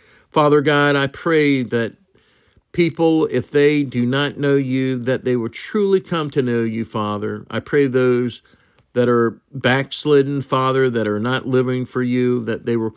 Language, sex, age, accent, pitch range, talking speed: English, male, 50-69, American, 110-135 Hz, 170 wpm